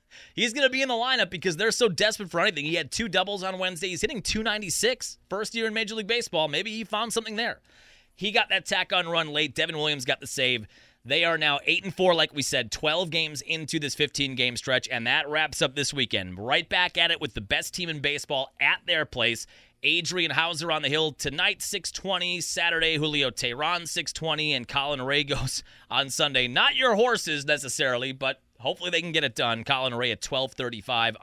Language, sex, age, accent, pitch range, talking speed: English, male, 30-49, American, 125-165 Hz, 210 wpm